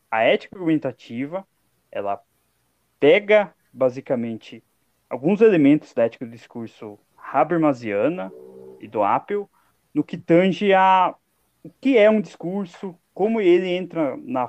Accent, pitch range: Brazilian, 120-180 Hz